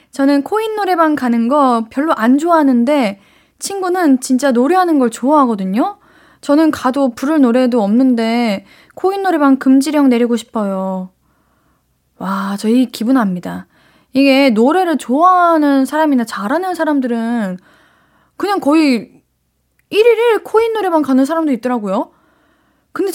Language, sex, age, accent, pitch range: Korean, female, 20-39, native, 220-310 Hz